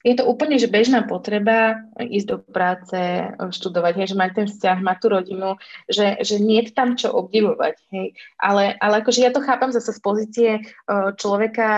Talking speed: 185 wpm